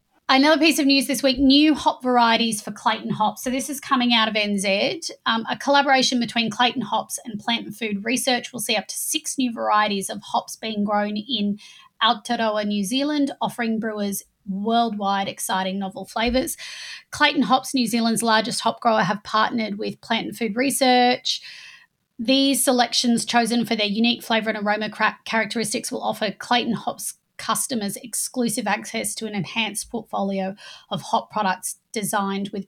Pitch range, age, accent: 205-245 Hz, 20-39, Australian